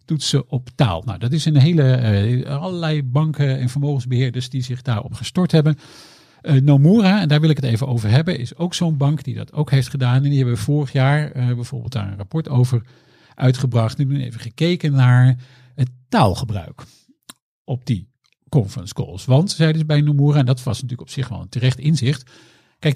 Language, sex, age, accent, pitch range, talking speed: Dutch, male, 50-69, Dutch, 120-145 Hz, 205 wpm